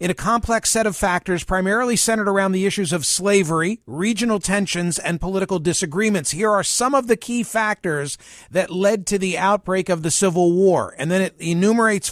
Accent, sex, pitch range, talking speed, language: American, male, 175-210 Hz, 190 wpm, English